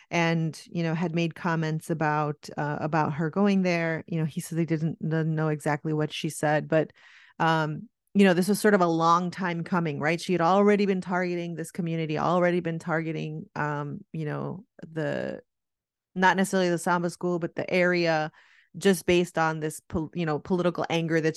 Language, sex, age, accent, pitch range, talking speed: English, female, 30-49, American, 155-185 Hz, 190 wpm